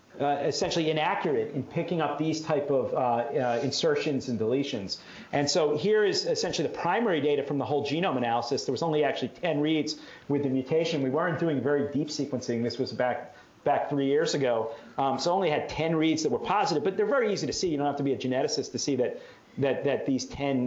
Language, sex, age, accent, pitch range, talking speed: English, male, 40-59, American, 130-160 Hz, 225 wpm